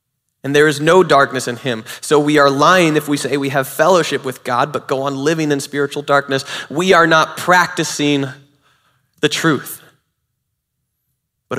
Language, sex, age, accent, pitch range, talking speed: English, male, 20-39, American, 135-160 Hz, 170 wpm